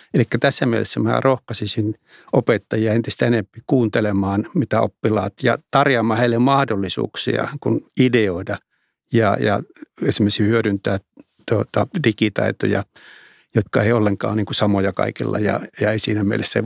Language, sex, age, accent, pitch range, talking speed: Finnish, male, 60-79, native, 105-125 Hz, 125 wpm